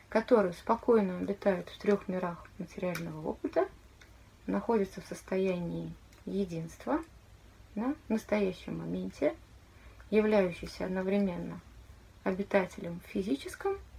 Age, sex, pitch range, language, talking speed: 20-39, female, 180-230 Hz, Russian, 85 wpm